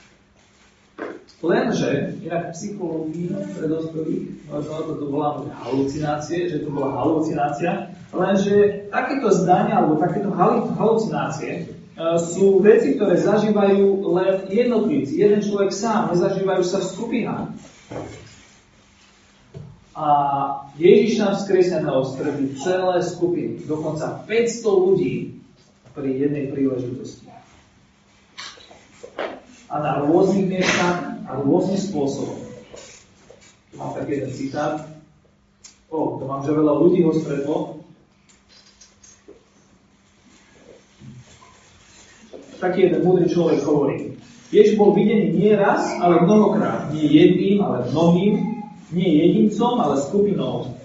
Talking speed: 95 wpm